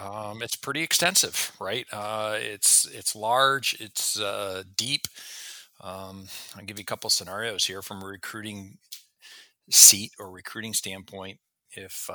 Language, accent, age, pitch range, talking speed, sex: English, American, 40-59, 95-105 Hz, 140 wpm, male